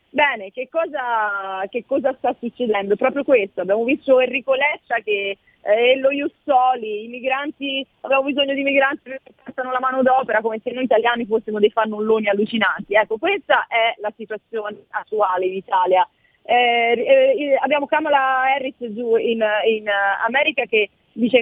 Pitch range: 205-260 Hz